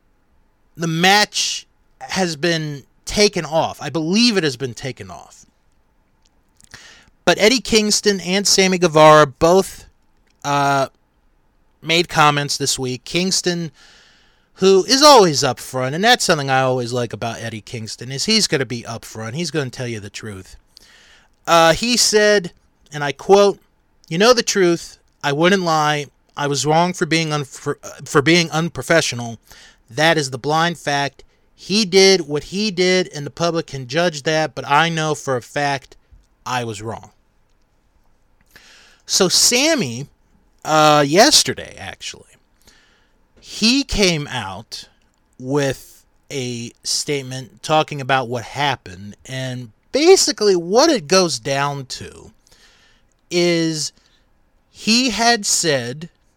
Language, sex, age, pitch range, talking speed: English, male, 30-49, 125-180 Hz, 135 wpm